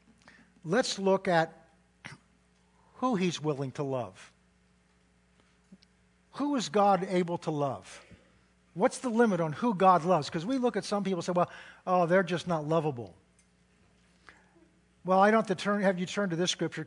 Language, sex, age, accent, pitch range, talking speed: English, male, 50-69, American, 135-195 Hz, 165 wpm